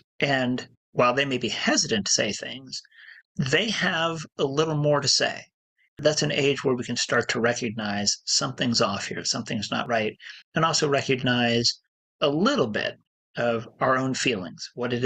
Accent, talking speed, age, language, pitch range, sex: American, 170 wpm, 40-59, English, 110-145 Hz, male